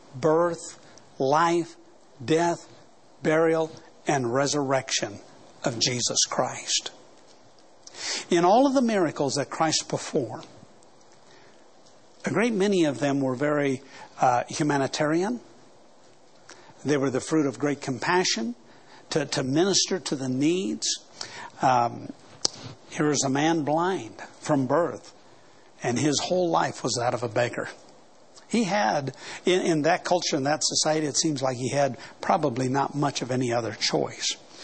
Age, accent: 60-79, American